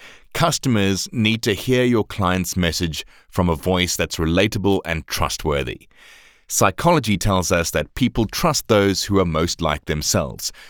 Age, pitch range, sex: 30-49, 90-115 Hz, male